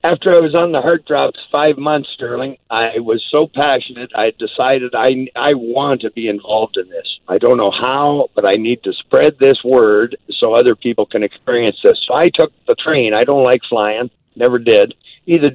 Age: 60-79